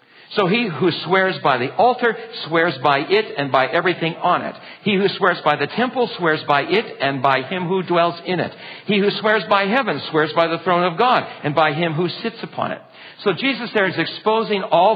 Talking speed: 220 wpm